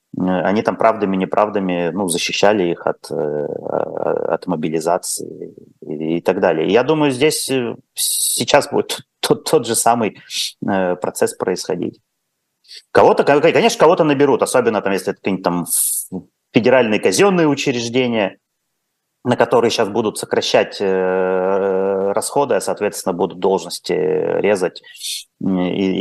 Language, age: Russian, 30-49